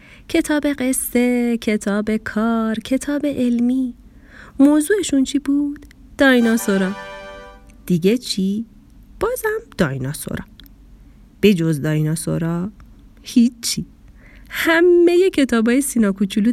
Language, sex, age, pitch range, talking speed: Persian, female, 30-49, 195-280 Hz, 80 wpm